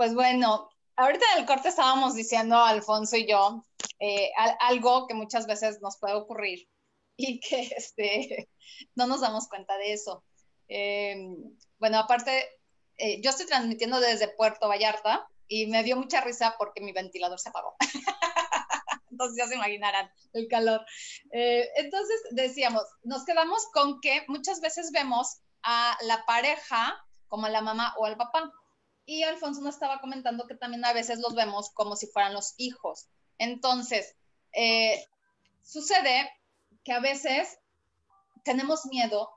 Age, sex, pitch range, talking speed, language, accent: 30-49, female, 220-270 Hz, 150 wpm, Spanish, Mexican